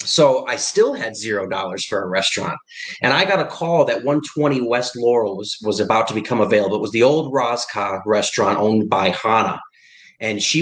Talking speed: 190 wpm